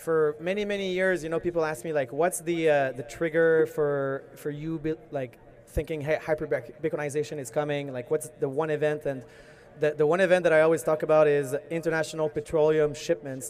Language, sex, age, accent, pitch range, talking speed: English, male, 20-39, Canadian, 140-160 Hz, 190 wpm